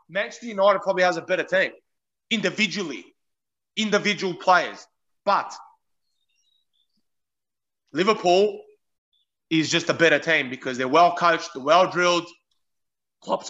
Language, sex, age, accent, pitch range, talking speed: English, male, 30-49, Australian, 170-205 Hz, 100 wpm